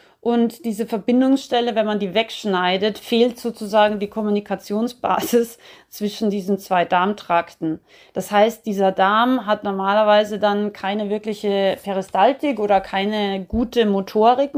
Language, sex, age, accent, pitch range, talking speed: German, female, 30-49, German, 195-230 Hz, 120 wpm